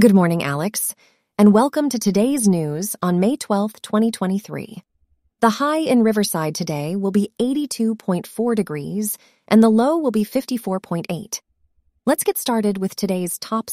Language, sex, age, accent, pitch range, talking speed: English, female, 30-49, American, 190-235 Hz, 145 wpm